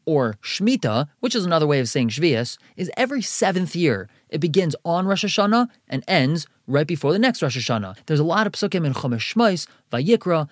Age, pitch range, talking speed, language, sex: 20-39, 135-190 Hz, 200 wpm, English, male